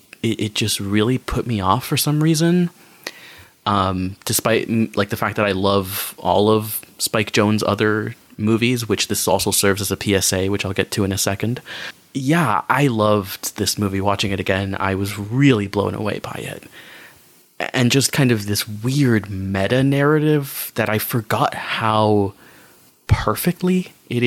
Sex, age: male, 20-39